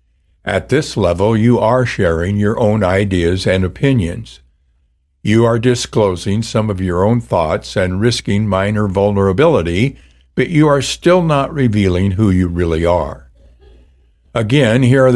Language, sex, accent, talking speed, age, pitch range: English, male, American, 145 wpm, 60-79, 80-115 Hz